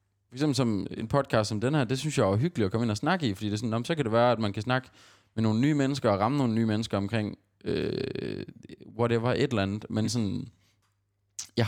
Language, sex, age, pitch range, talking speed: Danish, male, 20-39, 100-125 Hz, 240 wpm